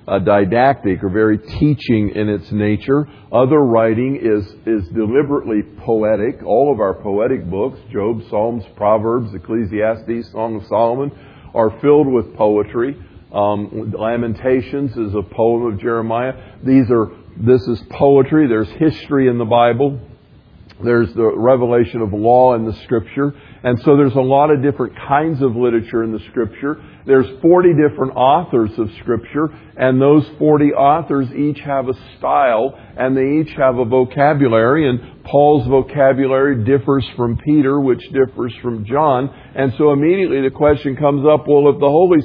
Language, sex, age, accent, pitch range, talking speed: English, male, 50-69, American, 115-140 Hz, 155 wpm